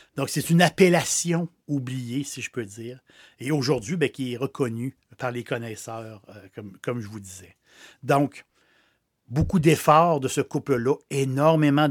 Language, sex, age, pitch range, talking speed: French, male, 60-79, 125-165 Hz, 155 wpm